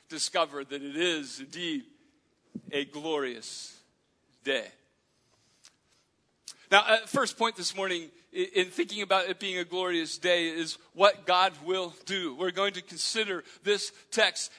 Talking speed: 130 wpm